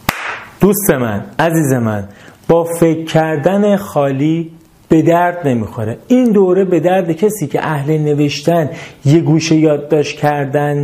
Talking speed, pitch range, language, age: 125 wpm, 125-170 Hz, Persian, 30-49